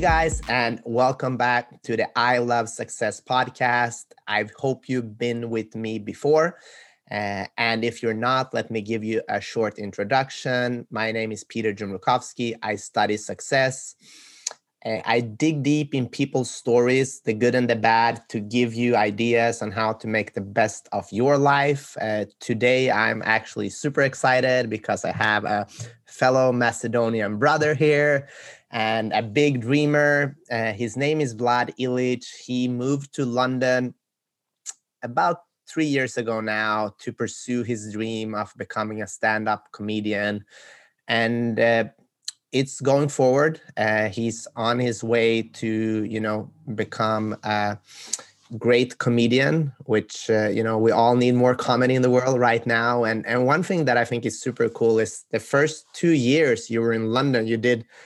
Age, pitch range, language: 20-39, 110-130 Hz, English